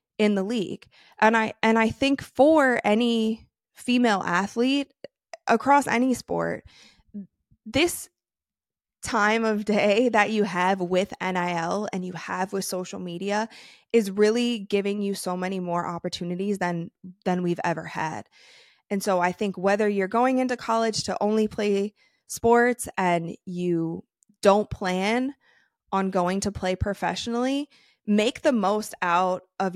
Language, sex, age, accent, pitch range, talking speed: English, female, 20-39, American, 185-225 Hz, 140 wpm